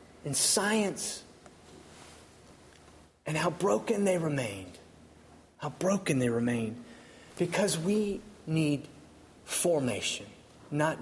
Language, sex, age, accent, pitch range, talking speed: English, male, 40-59, American, 140-190 Hz, 85 wpm